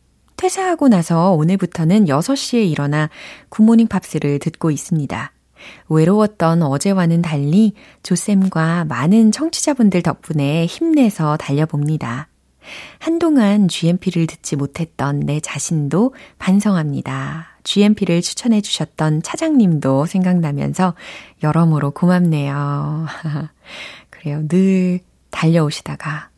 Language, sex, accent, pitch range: Korean, female, native, 150-210 Hz